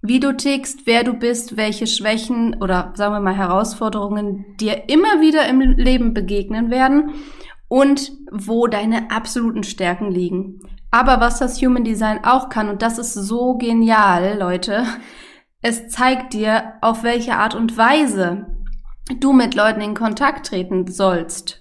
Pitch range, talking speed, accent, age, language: 195-240 Hz, 150 wpm, German, 20-39, German